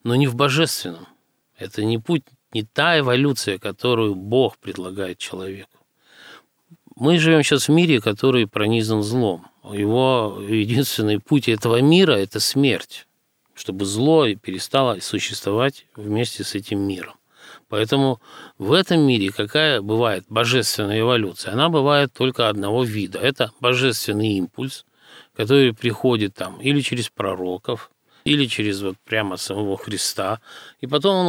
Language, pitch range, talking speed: Russian, 100-135 Hz, 130 wpm